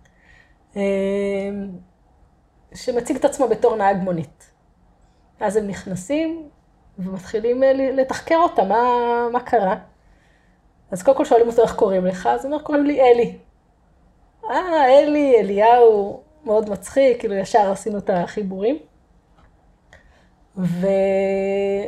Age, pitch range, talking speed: 20-39, 195-255 Hz, 105 wpm